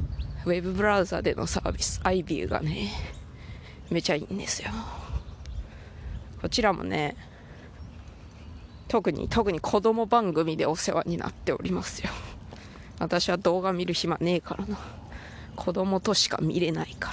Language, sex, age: Japanese, female, 20-39